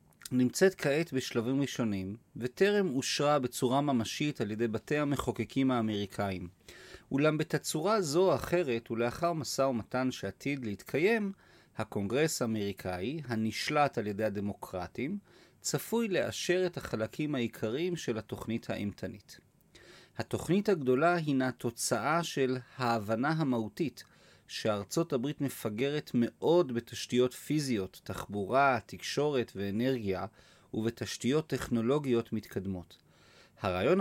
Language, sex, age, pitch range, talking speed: Hebrew, male, 30-49, 110-150 Hz, 100 wpm